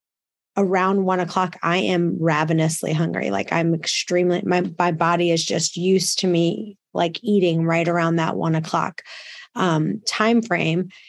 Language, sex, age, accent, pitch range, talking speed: English, female, 20-39, American, 170-195 Hz, 145 wpm